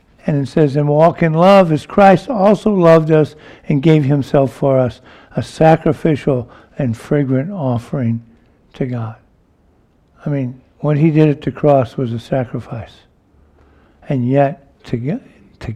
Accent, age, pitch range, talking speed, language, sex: American, 60-79, 125-165 Hz, 150 wpm, English, male